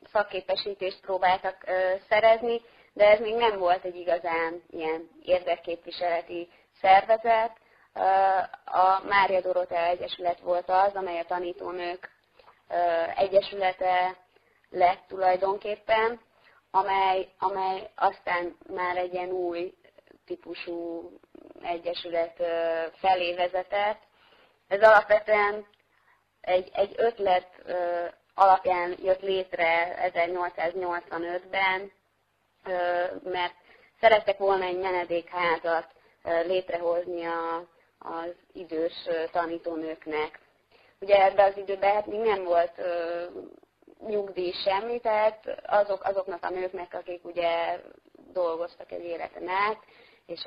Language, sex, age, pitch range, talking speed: Hungarian, female, 20-39, 170-200 Hz, 90 wpm